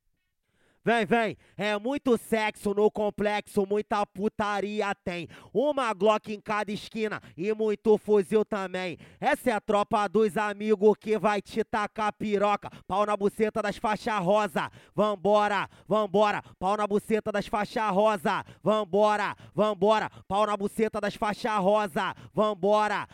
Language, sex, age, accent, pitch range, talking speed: English, male, 20-39, Brazilian, 175-210 Hz, 135 wpm